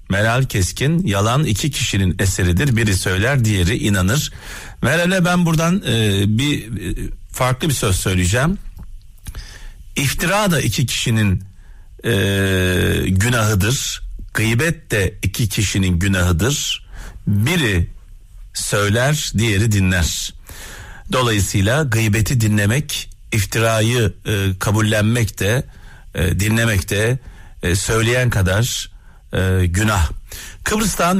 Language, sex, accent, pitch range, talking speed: Turkish, male, native, 95-135 Hz, 95 wpm